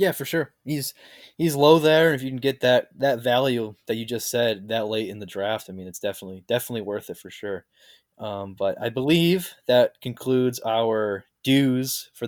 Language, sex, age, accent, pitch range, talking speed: English, male, 20-39, American, 115-130 Hz, 200 wpm